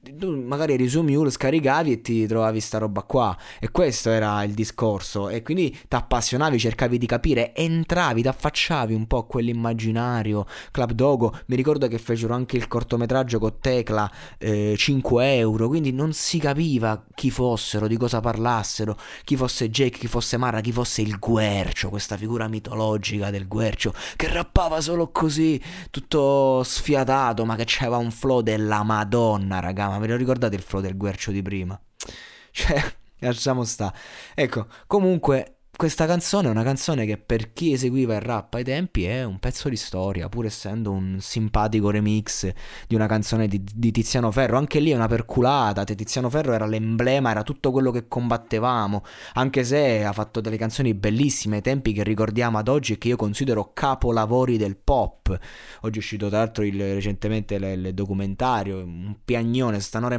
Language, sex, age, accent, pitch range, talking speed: Italian, male, 20-39, native, 105-130 Hz, 170 wpm